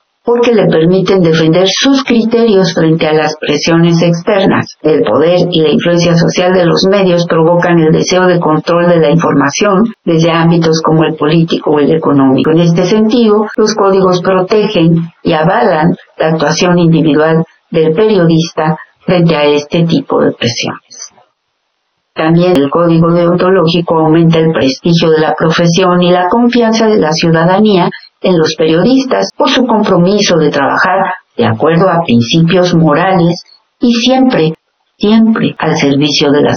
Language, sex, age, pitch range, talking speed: Spanish, female, 50-69, 160-200 Hz, 150 wpm